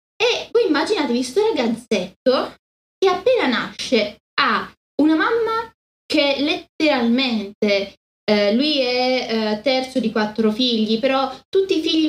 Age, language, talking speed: 20-39, Italian, 125 wpm